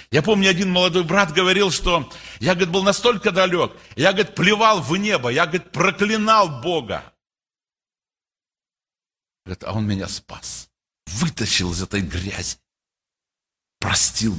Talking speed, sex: 130 wpm, male